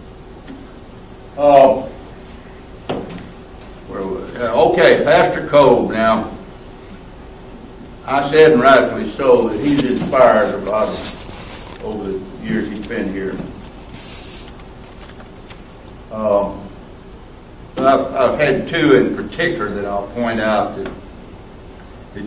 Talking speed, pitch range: 90 wpm, 105-135 Hz